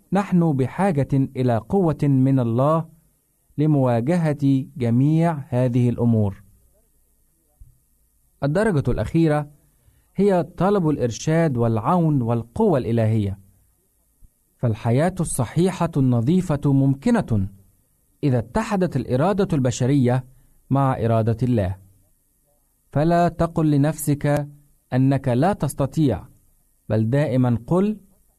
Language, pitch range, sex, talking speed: Arabic, 115-165 Hz, male, 80 wpm